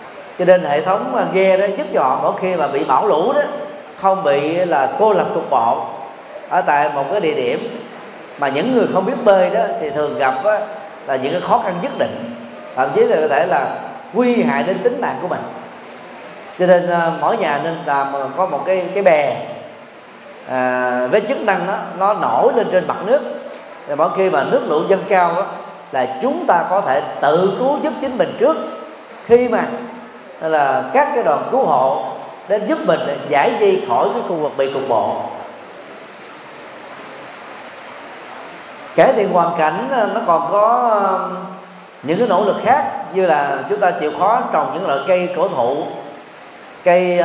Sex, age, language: male, 20-39, Vietnamese